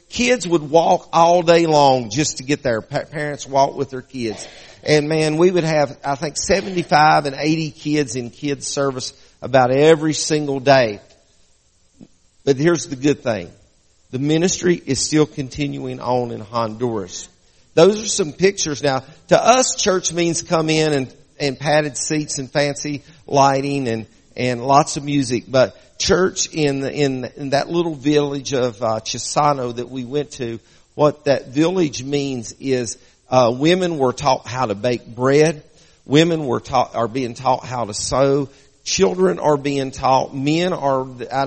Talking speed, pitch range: 165 wpm, 125-155 Hz